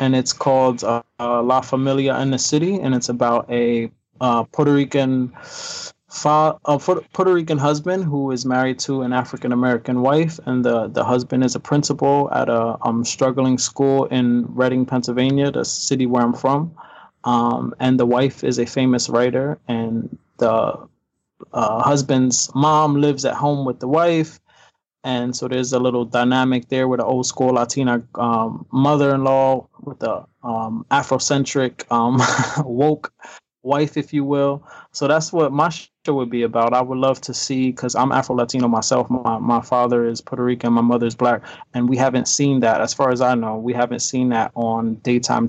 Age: 20-39